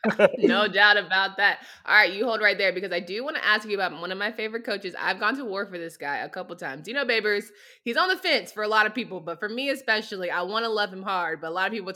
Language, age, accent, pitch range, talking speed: English, 20-39, American, 180-225 Hz, 300 wpm